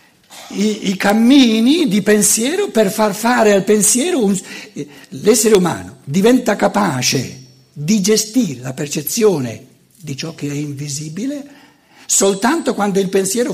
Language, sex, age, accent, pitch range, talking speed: Italian, male, 60-79, native, 160-245 Hz, 125 wpm